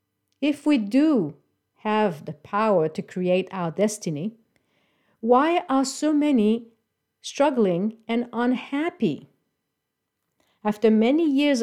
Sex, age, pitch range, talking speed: female, 50-69, 185-255 Hz, 105 wpm